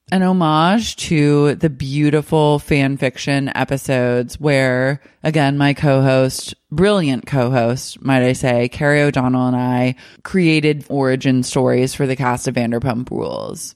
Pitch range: 130-160 Hz